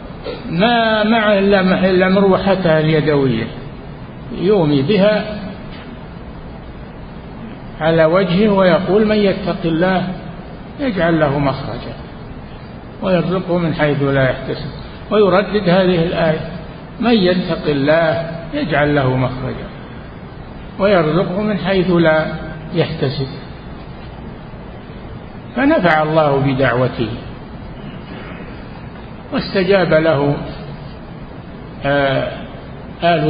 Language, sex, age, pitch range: Arabic, male, 50-69, 140-180 Hz